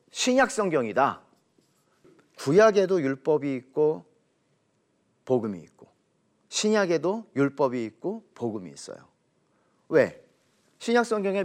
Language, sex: Korean, male